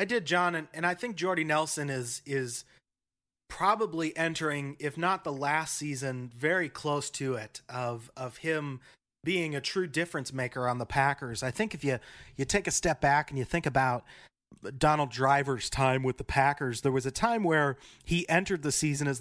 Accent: American